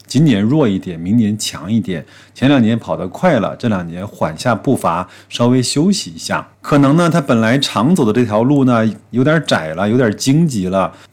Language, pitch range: Chinese, 100-130 Hz